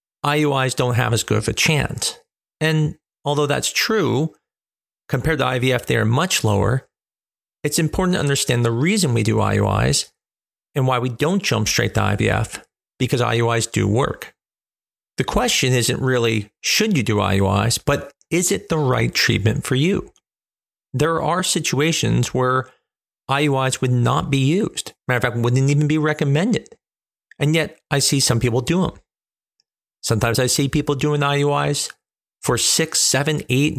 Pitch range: 115-155 Hz